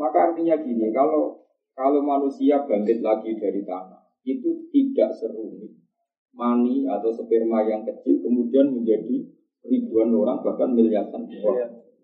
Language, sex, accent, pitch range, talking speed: Indonesian, male, native, 110-165 Hz, 125 wpm